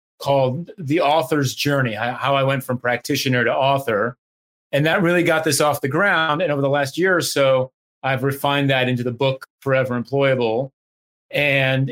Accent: American